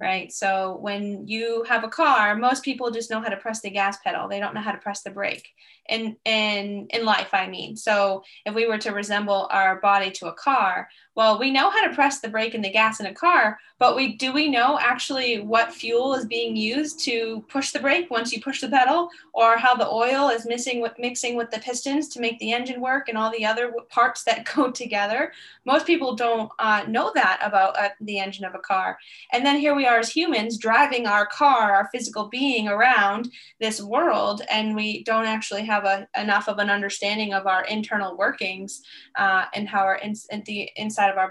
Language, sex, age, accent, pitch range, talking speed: English, female, 10-29, American, 205-245 Hz, 215 wpm